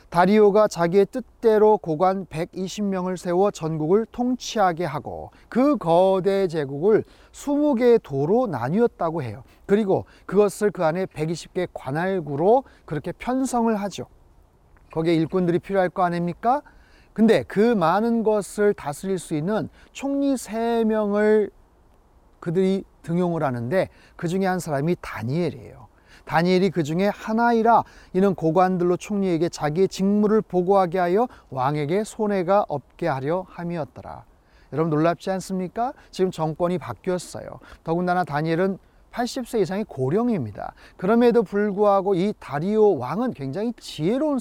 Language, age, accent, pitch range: Korean, 40-59, native, 170-215 Hz